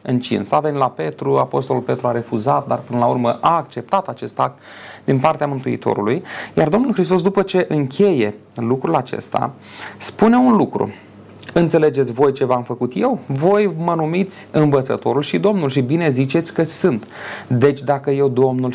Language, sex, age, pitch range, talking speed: Romanian, male, 30-49, 125-165 Hz, 165 wpm